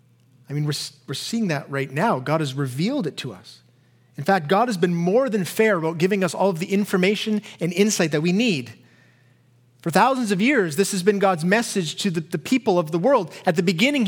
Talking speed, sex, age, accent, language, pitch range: 225 wpm, male, 30-49, American, English, 140-225 Hz